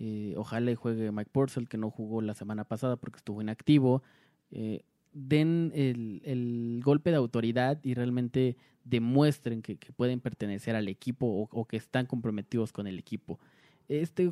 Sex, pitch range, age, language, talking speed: male, 115-155 Hz, 20-39, Spanish, 165 wpm